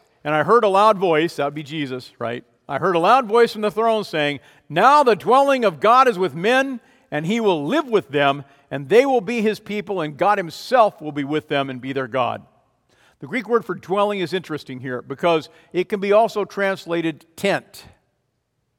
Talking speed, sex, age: 210 wpm, male, 50-69